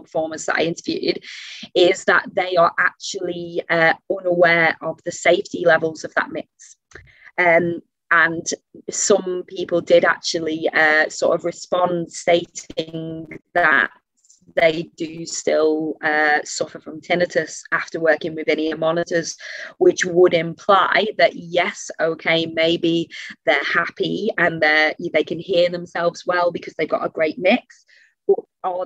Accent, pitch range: British, 160-180 Hz